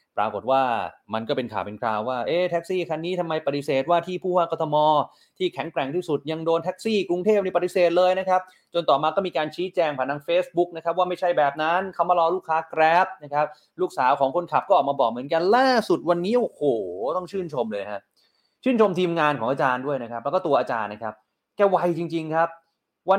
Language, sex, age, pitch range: Thai, male, 30-49, 140-185 Hz